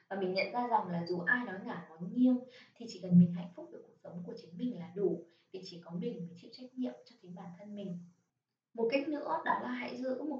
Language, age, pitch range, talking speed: Vietnamese, 20-39, 185-265 Hz, 270 wpm